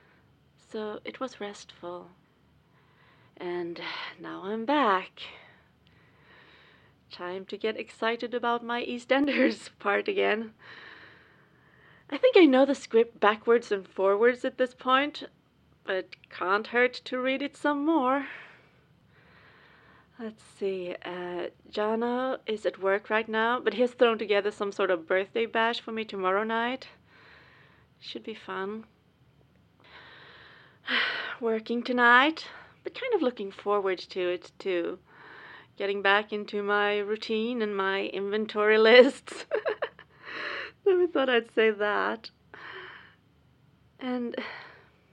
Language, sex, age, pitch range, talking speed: English, female, 30-49, 200-250 Hz, 115 wpm